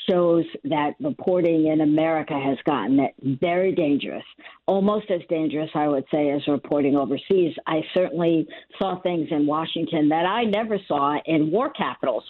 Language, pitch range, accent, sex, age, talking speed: English, 145-175 Hz, American, female, 50-69, 150 wpm